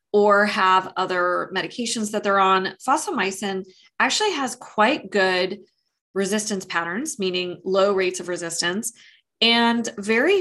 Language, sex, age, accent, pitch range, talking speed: English, female, 20-39, American, 180-230 Hz, 120 wpm